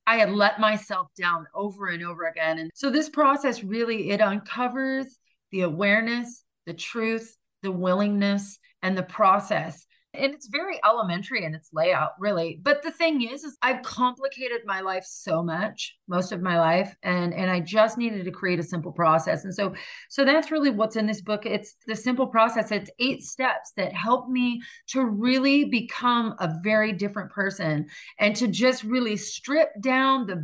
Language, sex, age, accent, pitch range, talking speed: English, female, 30-49, American, 185-245 Hz, 180 wpm